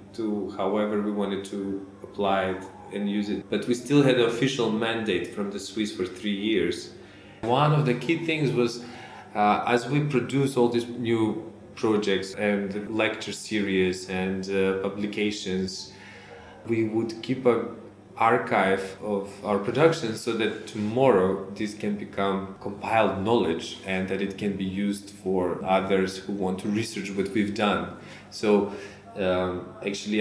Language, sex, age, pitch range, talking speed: English, male, 20-39, 95-110 Hz, 155 wpm